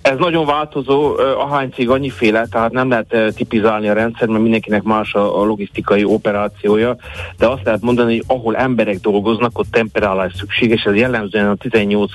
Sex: male